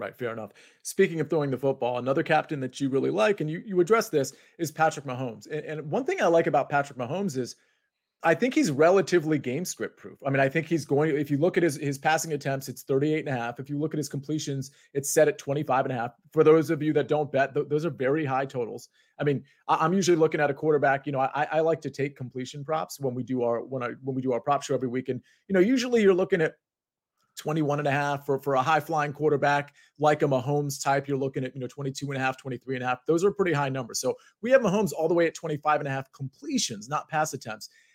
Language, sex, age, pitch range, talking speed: English, male, 30-49, 135-170 Hz, 265 wpm